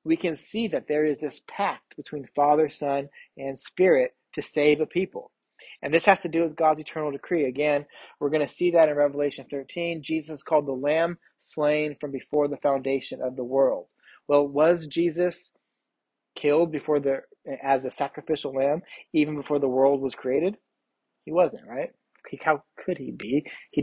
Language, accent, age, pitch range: English, American, 30-49, 140-160 Hz